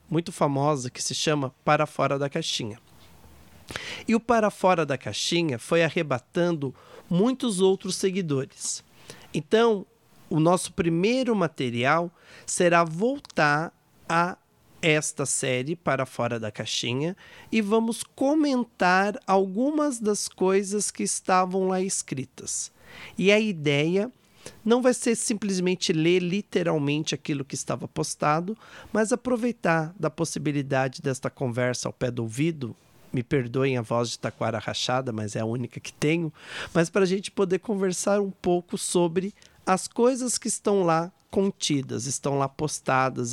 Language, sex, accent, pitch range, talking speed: Portuguese, male, Brazilian, 135-195 Hz, 135 wpm